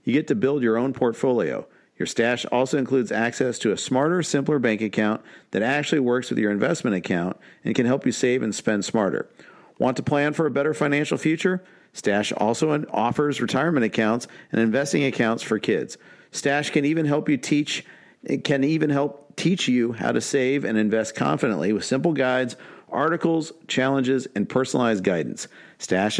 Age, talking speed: 50-69, 180 wpm